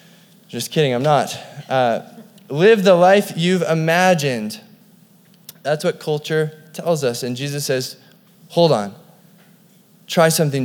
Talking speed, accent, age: 125 wpm, American, 20-39